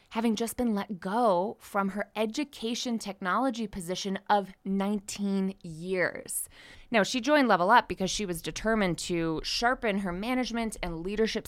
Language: English